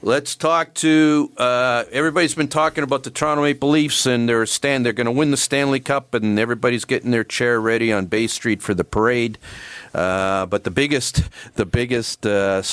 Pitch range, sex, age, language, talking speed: 105-130 Hz, male, 50-69, English, 195 wpm